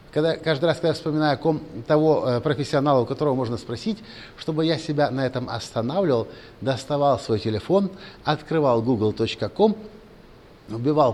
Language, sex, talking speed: Russian, male, 140 wpm